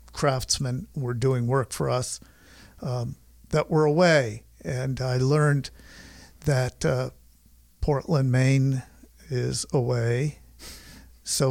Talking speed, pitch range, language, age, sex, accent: 105 wpm, 115-145 Hz, English, 50-69, male, American